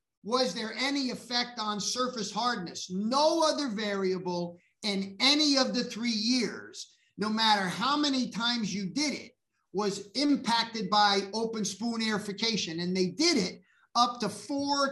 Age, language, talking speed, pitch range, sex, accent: 50-69, English, 150 wpm, 195-255 Hz, male, American